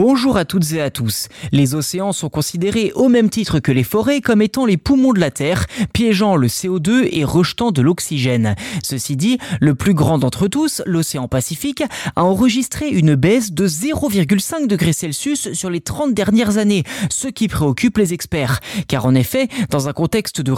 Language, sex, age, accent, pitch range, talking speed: French, male, 30-49, French, 145-215 Hz, 185 wpm